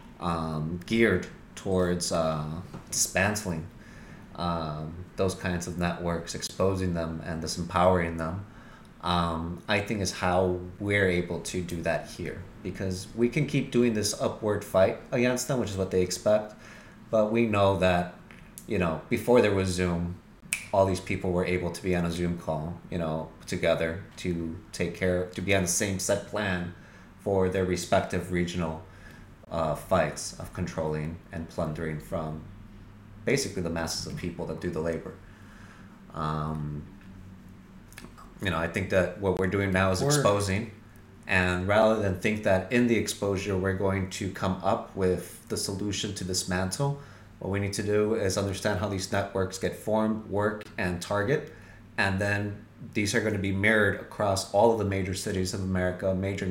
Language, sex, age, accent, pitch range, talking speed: English, male, 20-39, American, 90-105 Hz, 165 wpm